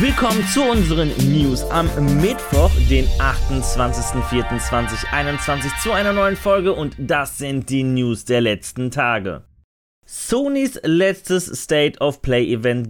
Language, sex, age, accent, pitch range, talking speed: German, male, 30-49, German, 120-165 Hz, 105 wpm